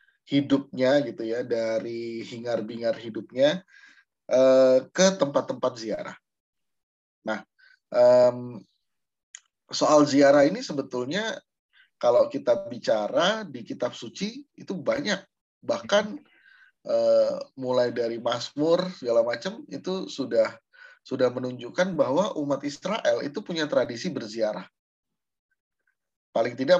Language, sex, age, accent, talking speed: Indonesian, male, 30-49, native, 90 wpm